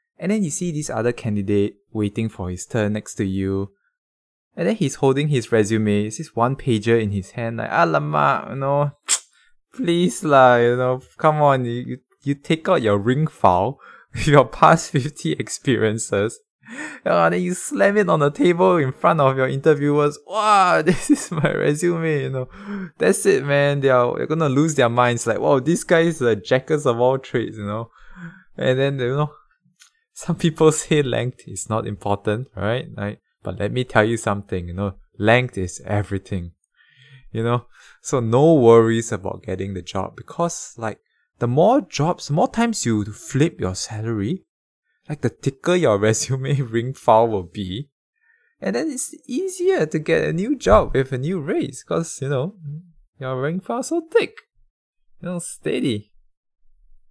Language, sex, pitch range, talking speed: English, male, 110-165 Hz, 180 wpm